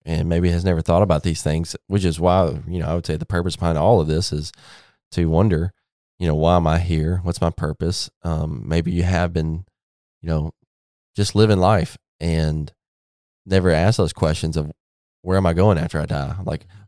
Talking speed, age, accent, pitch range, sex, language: 205 wpm, 20-39, American, 80-95 Hz, male, English